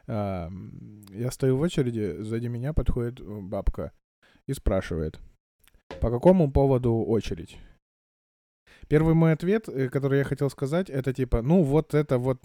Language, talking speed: Russian, 130 wpm